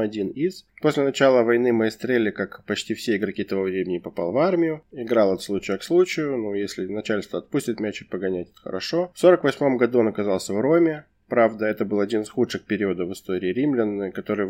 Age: 20-39